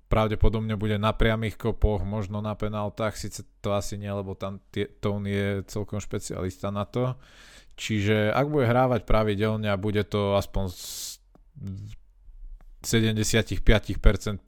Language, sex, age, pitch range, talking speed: Slovak, male, 20-39, 95-110 Hz, 130 wpm